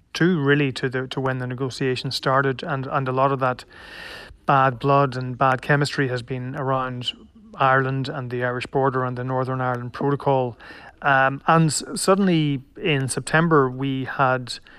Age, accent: 30-49, Irish